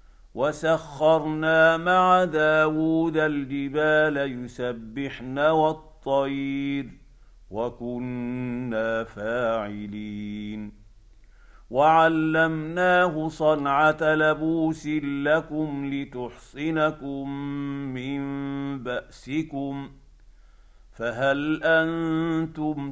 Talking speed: 45 wpm